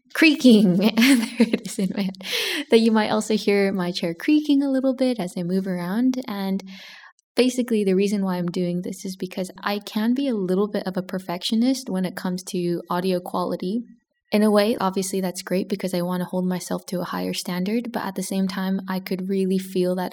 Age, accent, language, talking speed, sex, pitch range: 10-29, American, English, 220 wpm, female, 185-215 Hz